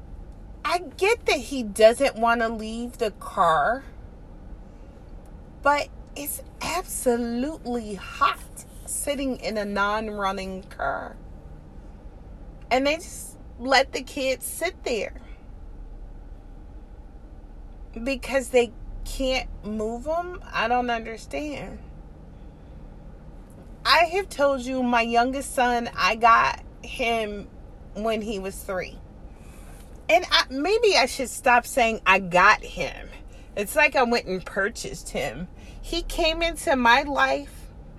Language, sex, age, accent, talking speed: English, female, 30-49, American, 110 wpm